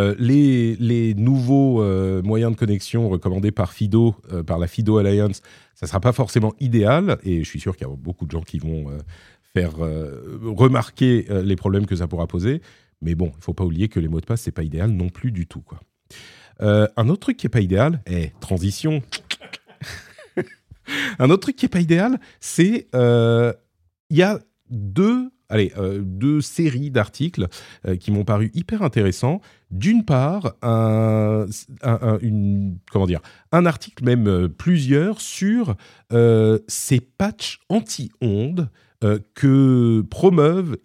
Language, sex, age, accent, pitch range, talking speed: French, male, 40-59, French, 90-130 Hz, 175 wpm